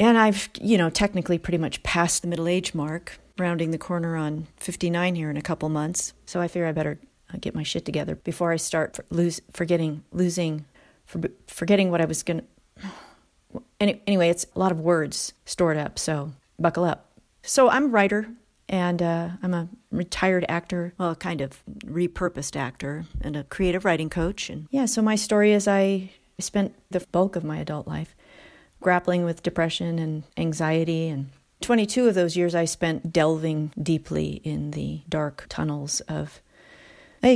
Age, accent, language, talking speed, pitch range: 40-59, American, English, 180 wpm, 160-190 Hz